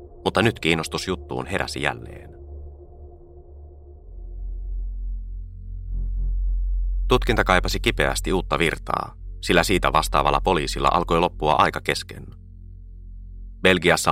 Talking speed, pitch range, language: 80 wpm, 70-90 Hz, Finnish